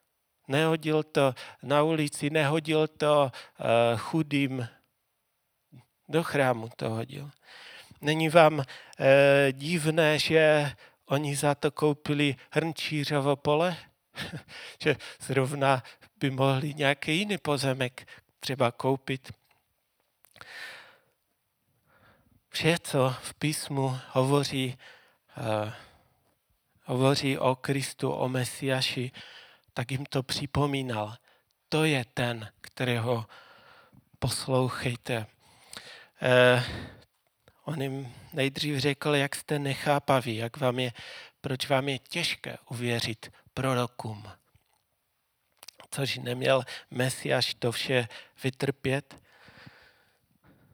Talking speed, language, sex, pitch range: 90 wpm, Czech, male, 125-145 Hz